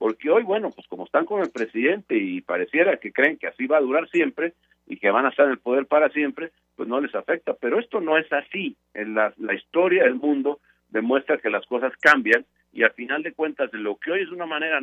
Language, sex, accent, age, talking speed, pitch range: Spanish, male, Mexican, 60-79, 245 wpm, 115-180 Hz